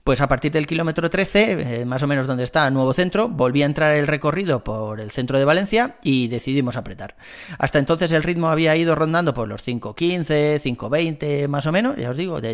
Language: Spanish